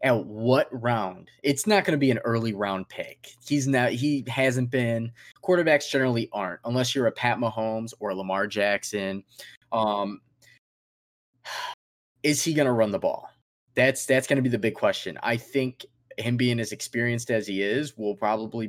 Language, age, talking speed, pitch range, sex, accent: English, 20-39, 180 wpm, 110-135 Hz, male, American